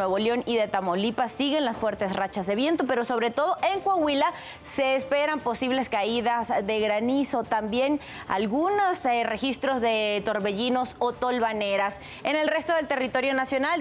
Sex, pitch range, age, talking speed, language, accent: female, 215-270 Hz, 30-49, 155 wpm, Spanish, Mexican